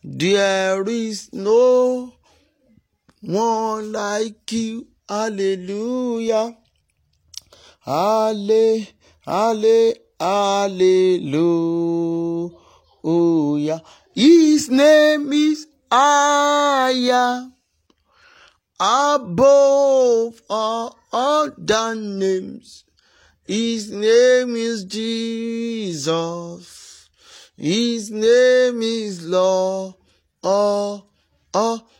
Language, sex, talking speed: English, male, 50 wpm